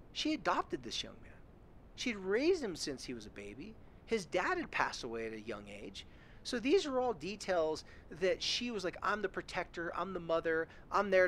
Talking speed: 205 wpm